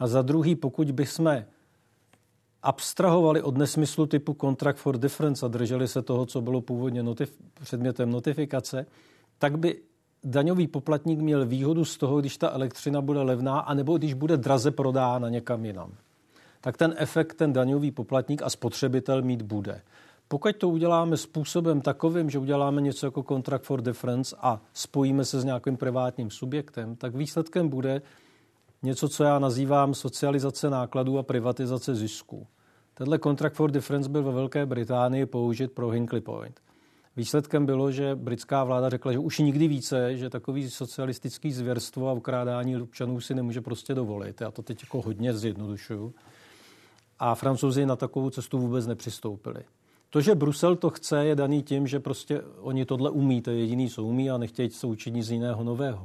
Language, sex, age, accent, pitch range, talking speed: Czech, male, 50-69, native, 125-145 Hz, 165 wpm